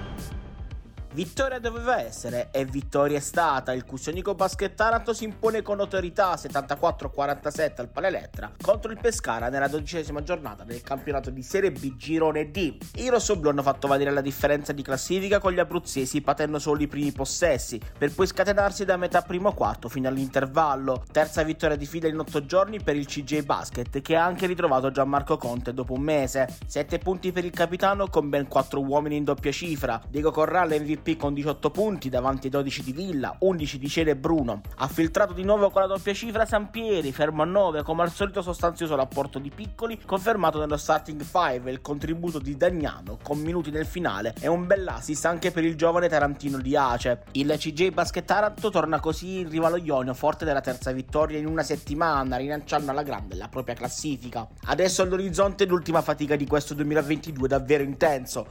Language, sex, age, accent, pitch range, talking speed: Italian, male, 30-49, native, 140-175 Hz, 180 wpm